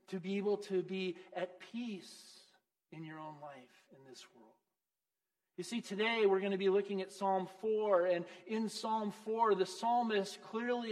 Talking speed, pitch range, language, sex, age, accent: 175 wpm, 190-240 Hz, English, male, 40-59, American